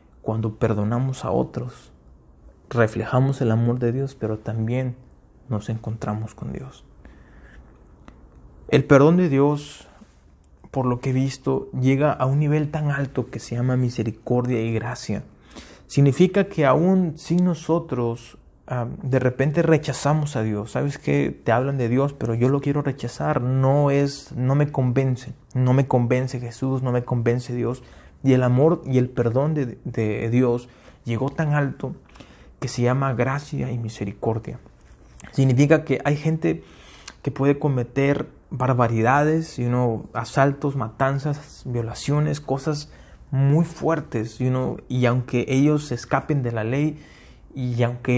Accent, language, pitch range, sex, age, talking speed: Mexican, Spanish, 115-140 Hz, male, 30-49, 145 wpm